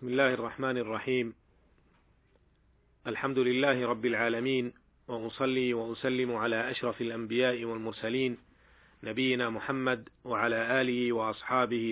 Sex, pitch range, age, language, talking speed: male, 115-130 Hz, 40-59, Arabic, 95 wpm